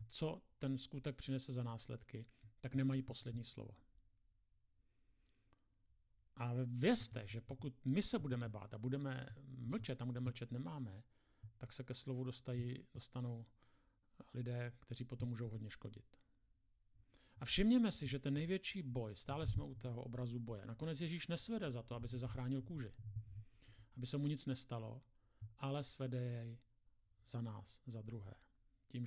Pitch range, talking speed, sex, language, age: 110-135 Hz, 150 wpm, male, Czech, 50-69